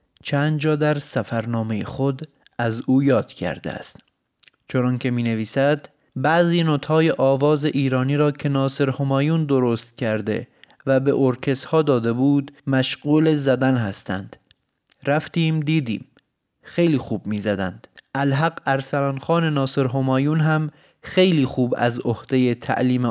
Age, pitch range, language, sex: 30-49, 130-155 Hz, Persian, male